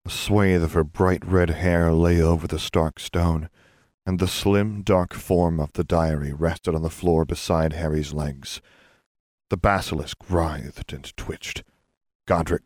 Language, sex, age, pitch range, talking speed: English, male, 40-59, 75-90 Hz, 155 wpm